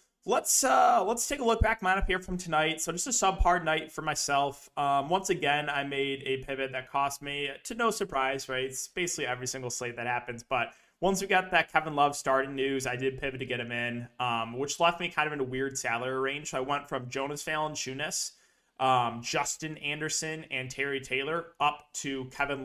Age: 20-39